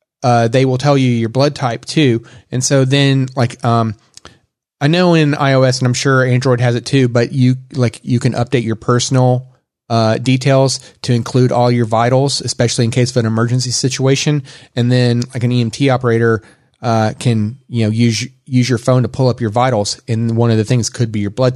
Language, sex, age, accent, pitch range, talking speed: English, male, 30-49, American, 120-140 Hz, 210 wpm